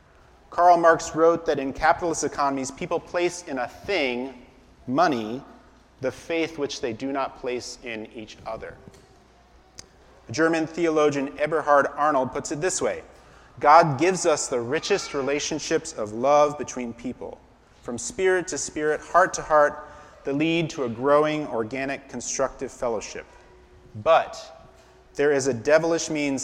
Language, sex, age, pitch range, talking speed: English, male, 30-49, 120-155 Hz, 140 wpm